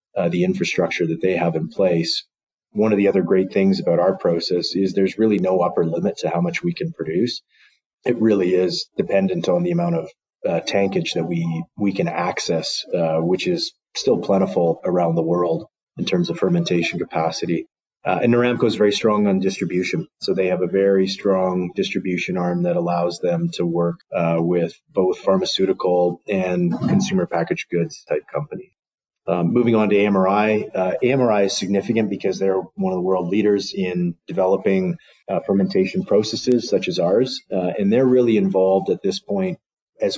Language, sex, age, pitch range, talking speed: English, male, 30-49, 90-110 Hz, 180 wpm